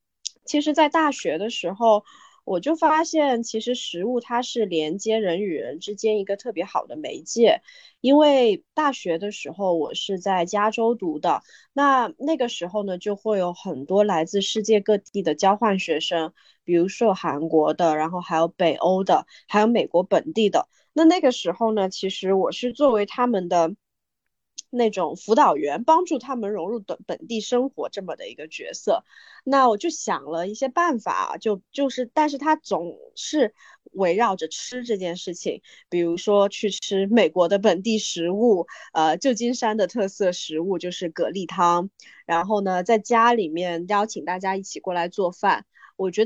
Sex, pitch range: female, 180-245 Hz